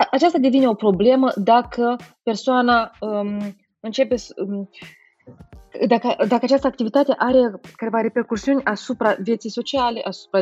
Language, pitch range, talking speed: Romanian, 185-250 Hz, 110 wpm